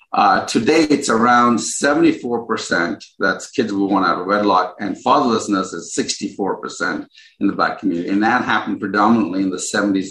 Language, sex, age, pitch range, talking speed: English, male, 50-69, 95-120 Hz, 160 wpm